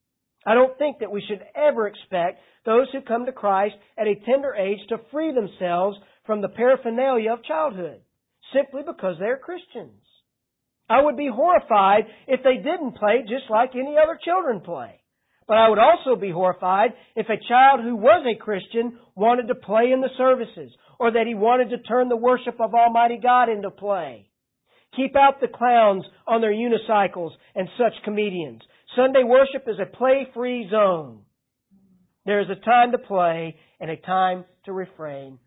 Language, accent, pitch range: English, American, 195-260 Hz